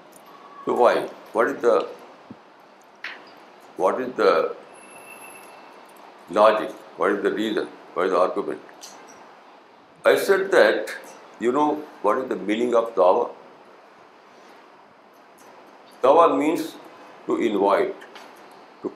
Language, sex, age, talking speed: Urdu, male, 60-79, 105 wpm